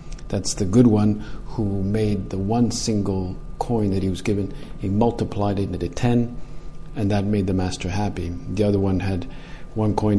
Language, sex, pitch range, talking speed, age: English, male, 95-130 Hz, 185 wpm, 50-69